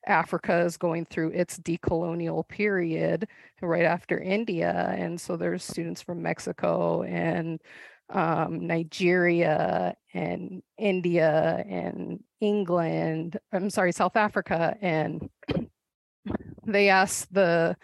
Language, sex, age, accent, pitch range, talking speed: English, female, 30-49, American, 165-195 Hz, 105 wpm